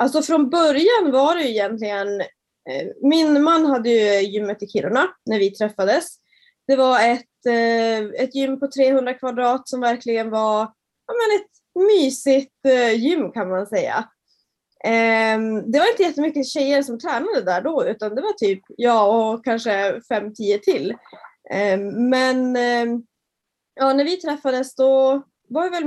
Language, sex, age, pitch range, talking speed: Swedish, female, 20-39, 215-275 Hz, 160 wpm